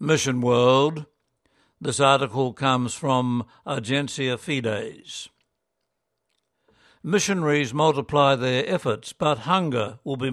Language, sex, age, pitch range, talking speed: English, male, 60-79, 125-150 Hz, 95 wpm